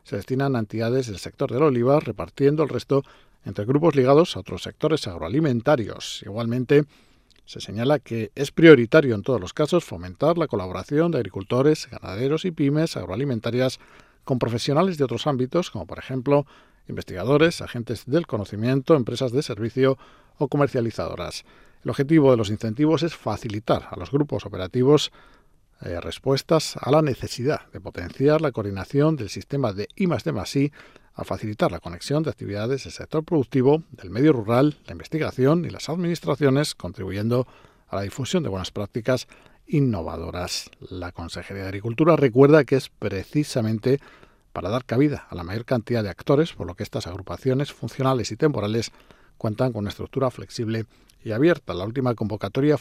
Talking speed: 160 wpm